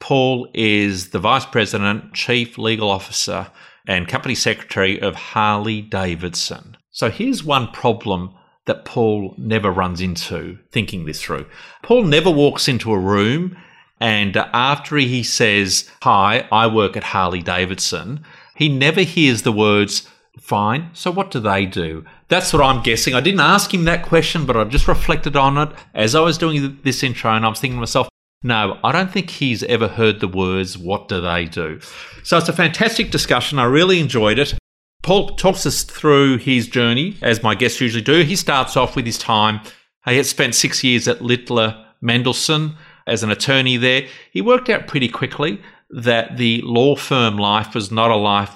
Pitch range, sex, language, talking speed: 105-140 Hz, male, English, 180 wpm